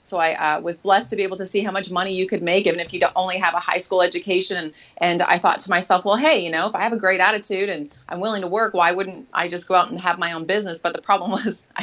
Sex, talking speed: female, 310 wpm